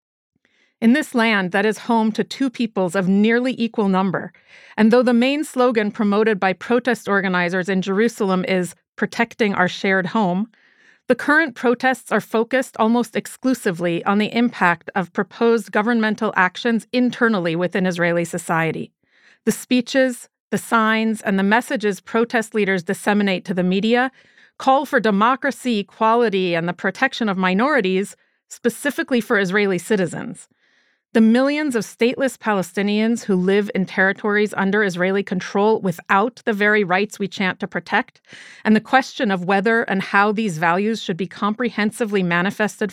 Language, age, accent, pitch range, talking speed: English, 40-59, American, 190-235 Hz, 150 wpm